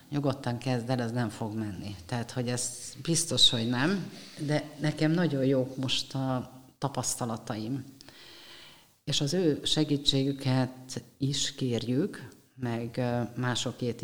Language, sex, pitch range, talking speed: Hungarian, female, 125-140 Hz, 120 wpm